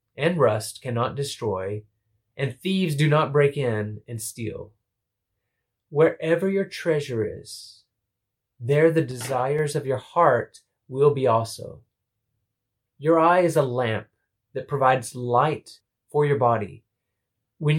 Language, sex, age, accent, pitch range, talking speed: English, male, 30-49, American, 110-150 Hz, 125 wpm